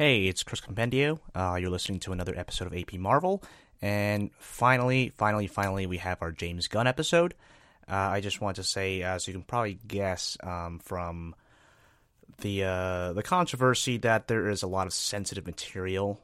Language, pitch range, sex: English, 90-105 Hz, male